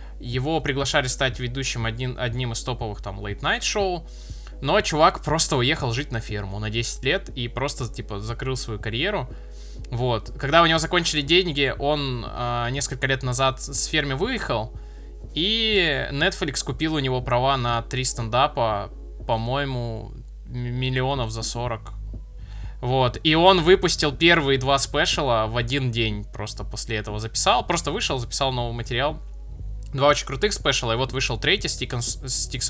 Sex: male